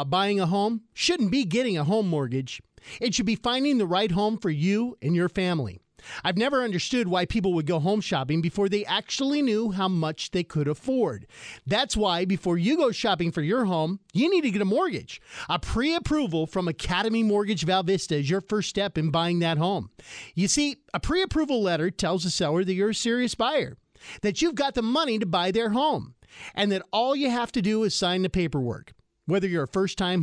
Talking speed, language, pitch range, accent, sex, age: 210 wpm, English, 175-235 Hz, American, male, 40-59